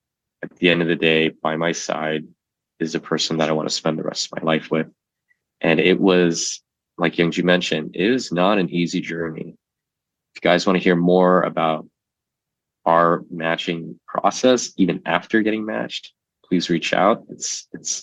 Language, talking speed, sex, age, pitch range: English, 185 wpm, male, 20-39, 80-90 Hz